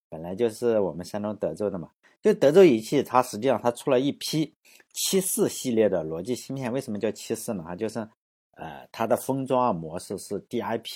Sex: male